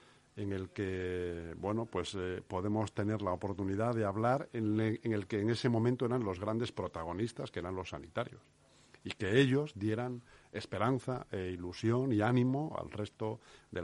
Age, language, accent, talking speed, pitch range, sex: 50-69, Spanish, Spanish, 175 wpm, 95-115 Hz, male